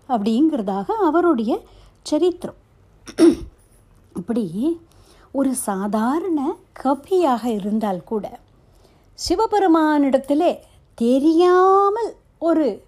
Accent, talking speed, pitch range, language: native, 55 wpm, 210-315 Hz, Tamil